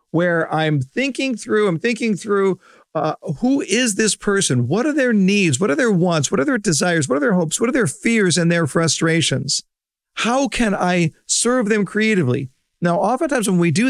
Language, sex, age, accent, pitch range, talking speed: English, male, 50-69, American, 155-215 Hz, 200 wpm